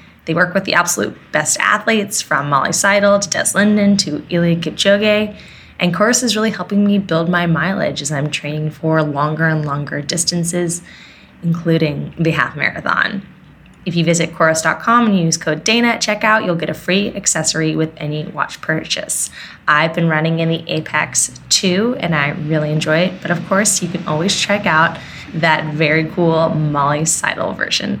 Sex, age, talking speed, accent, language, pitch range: female, 20-39, 175 wpm, American, English, 155-195 Hz